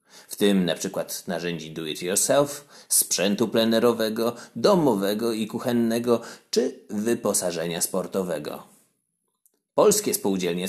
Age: 30-49